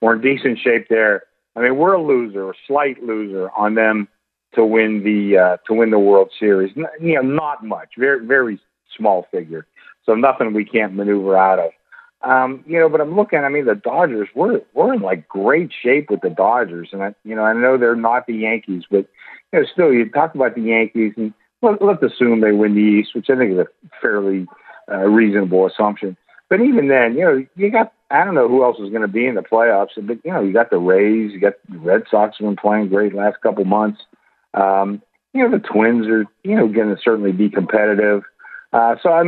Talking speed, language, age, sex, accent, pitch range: 225 wpm, English, 50-69, male, American, 105-140 Hz